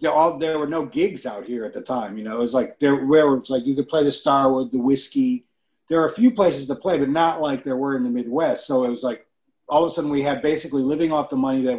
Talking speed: 280 wpm